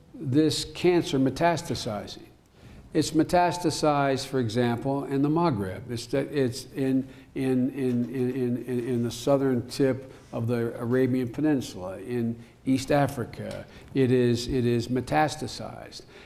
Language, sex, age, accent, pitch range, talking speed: English, male, 60-79, American, 120-145 Hz, 125 wpm